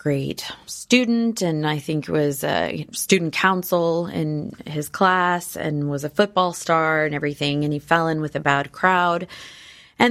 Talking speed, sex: 170 wpm, female